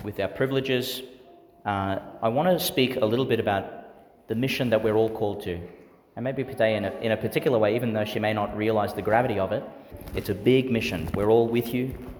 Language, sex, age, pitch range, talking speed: English, male, 30-49, 95-120 Hz, 225 wpm